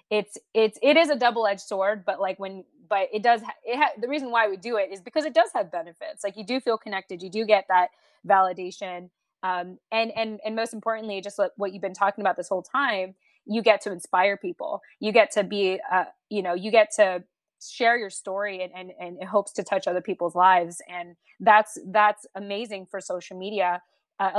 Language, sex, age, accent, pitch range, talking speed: English, female, 20-39, American, 185-220 Hz, 220 wpm